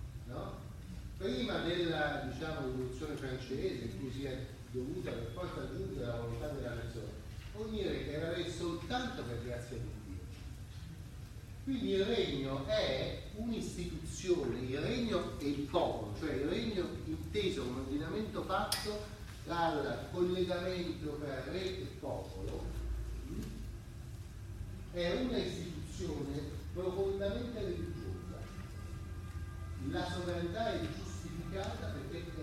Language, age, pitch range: Italian, 40-59, 100-145 Hz